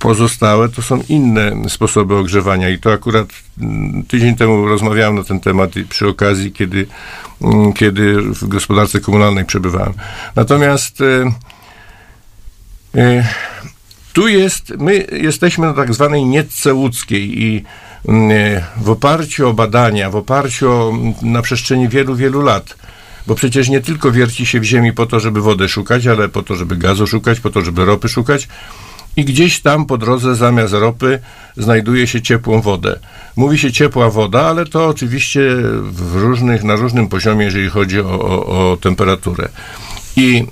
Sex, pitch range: male, 105-130 Hz